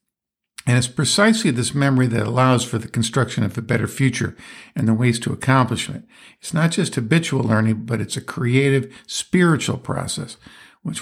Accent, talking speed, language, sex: American, 175 wpm, English, male